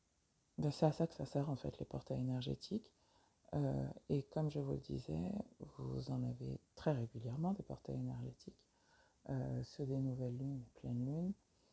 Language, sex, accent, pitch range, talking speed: English, female, French, 115-145 Hz, 170 wpm